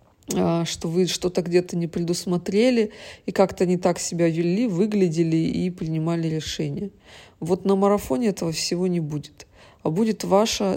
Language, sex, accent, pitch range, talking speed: Russian, female, native, 170-195 Hz, 145 wpm